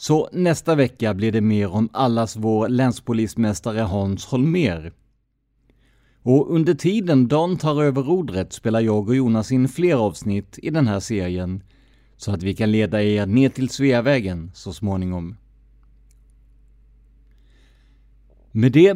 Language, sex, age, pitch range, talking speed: Swedish, male, 30-49, 105-135 Hz, 135 wpm